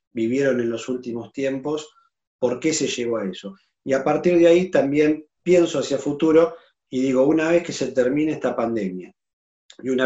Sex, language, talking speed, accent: male, Spanish, 185 wpm, Argentinian